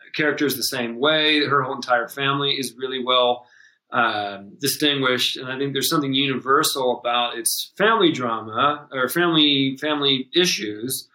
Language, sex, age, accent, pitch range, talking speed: English, male, 40-59, American, 125-150 Hz, 145 wpm